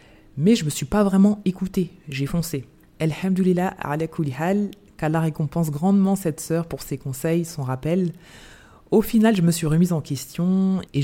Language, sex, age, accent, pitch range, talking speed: French, female, 20-39, French, 135-190 Hz, 165 wpm